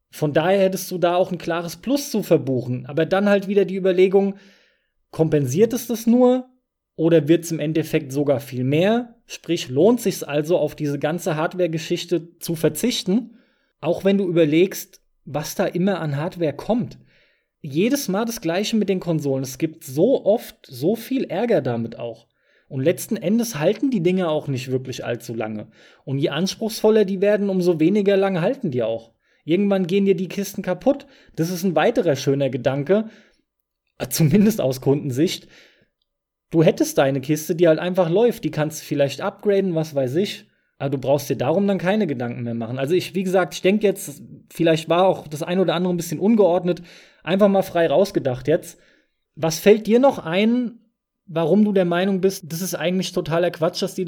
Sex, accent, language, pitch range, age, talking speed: male, German, German, 150-195 Hz, 20-39, 185 wpm